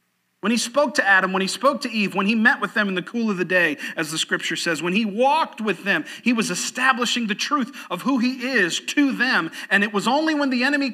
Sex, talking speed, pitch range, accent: male, 265 wpm, 170-255 Hz, American